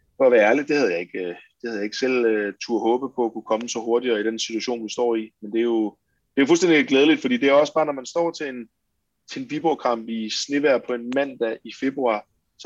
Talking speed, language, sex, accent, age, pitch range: 280 wpm, Danish, male, native, 20-39, 110-135 Hz